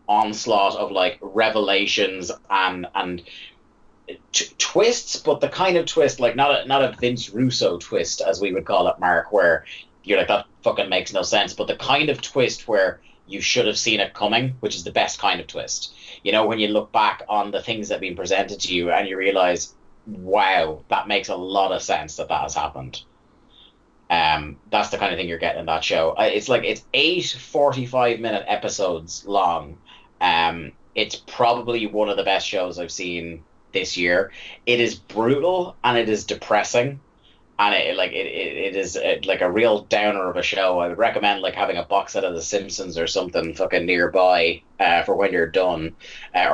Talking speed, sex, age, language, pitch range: 200 wpm, male, 30-49, English, 90-120 Hz